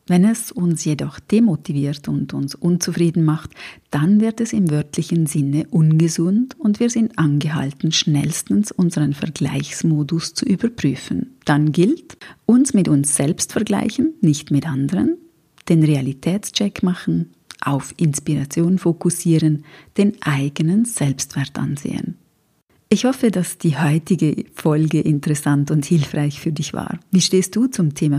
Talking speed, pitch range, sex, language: 130 wpm, 150-195 Hz, female, German